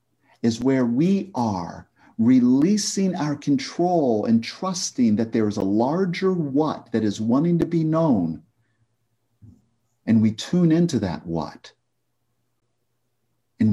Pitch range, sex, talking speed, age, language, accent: 115-170 Hz, male, 120 wpm, 50-69, English, American